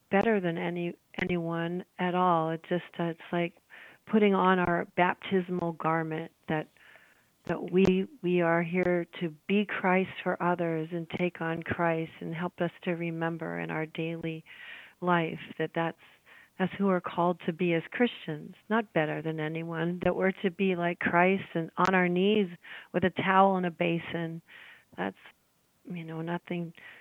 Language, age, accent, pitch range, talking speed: English, 40-59, American, 165-185 Hz, 165 wpm